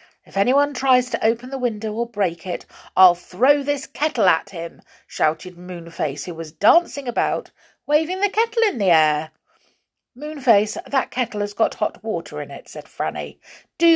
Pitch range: 175-260 Hz